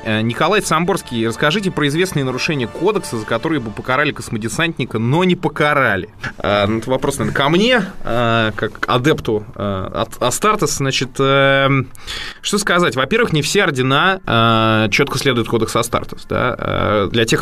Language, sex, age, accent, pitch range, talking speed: Russian, male, 20-39, native, 110-140 Hz, 150 wpm